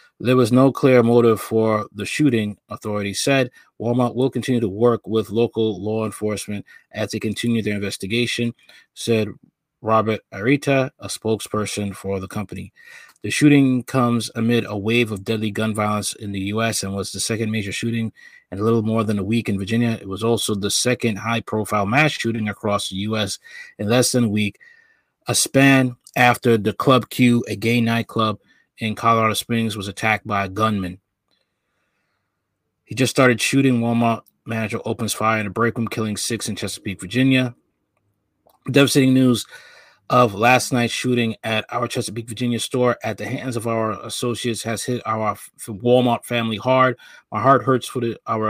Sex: male